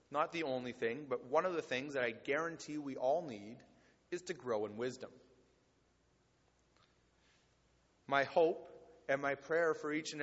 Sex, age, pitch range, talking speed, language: male, 30-49, 130-165 Hz, 165 wpm, English